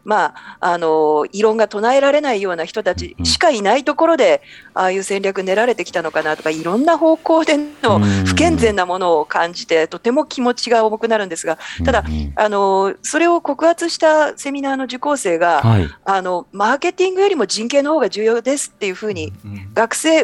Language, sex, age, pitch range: Japanese, female, 40-59, 175-290 Hz